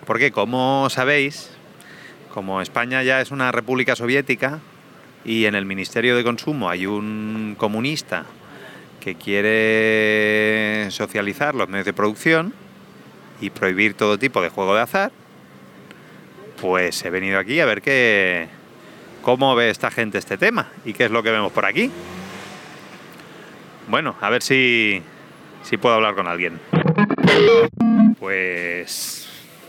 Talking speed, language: 130 wpm, Spanish